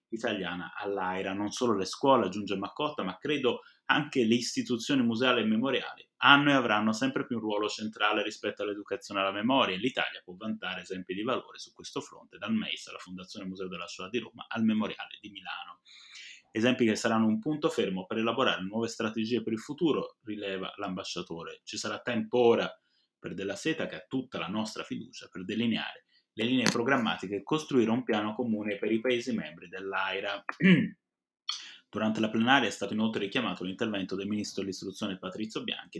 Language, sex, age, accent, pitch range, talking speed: Italian, male, 30-49, native, 100-130 Hz, 180 wpm